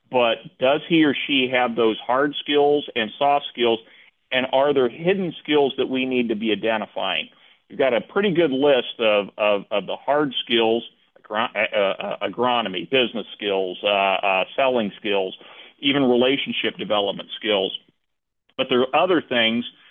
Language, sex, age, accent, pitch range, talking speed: English, male, 40-59, American, 110-145 Hz, 165 wpm